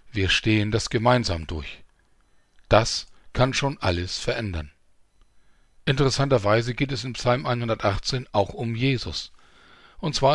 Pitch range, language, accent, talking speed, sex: 95-130 Hz, German, German, 120 wpm, male